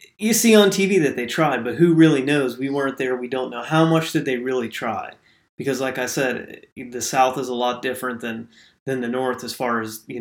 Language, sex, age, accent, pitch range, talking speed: English, male, 30-49, American, 125-150 Hz, 240 wpm